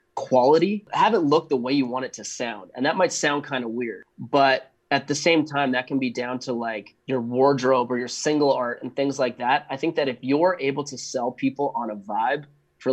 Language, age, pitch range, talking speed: English, 20-39, 120-140 Hz, 240 wpm